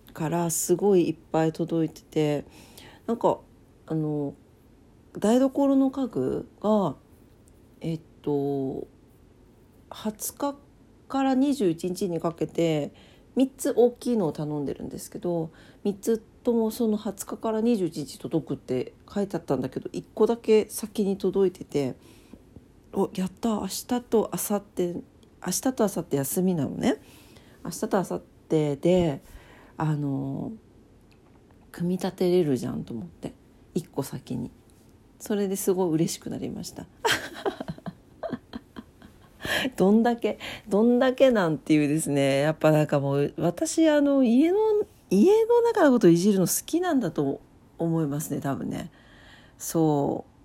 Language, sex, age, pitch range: Japanese, female, 40-59, 145-225 Hz